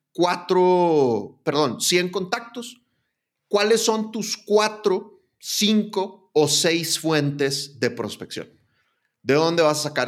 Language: Spanish